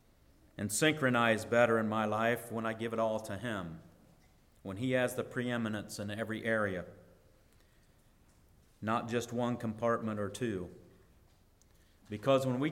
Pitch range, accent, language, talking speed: 105-130 Hz, American, English, 140 wpm